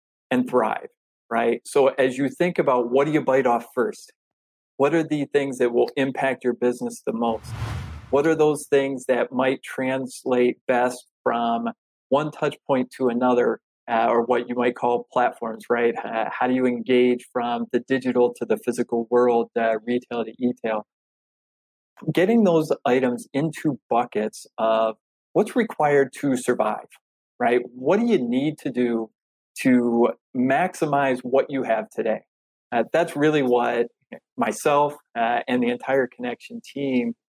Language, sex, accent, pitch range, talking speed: English, male, American, 120-150 Hz, 155 wpm